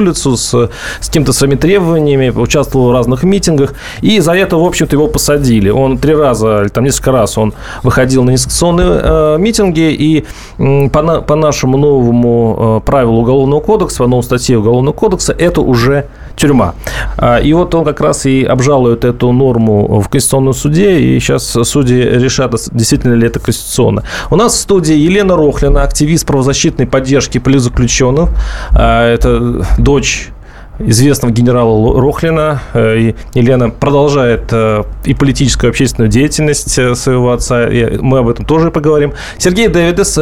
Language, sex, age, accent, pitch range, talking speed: Russian, male, 30-49, native, 120-150 Hz, 150 wpm